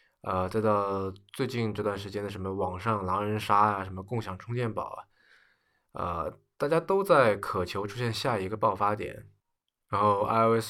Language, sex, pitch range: Chinese, male, 100-125 Hz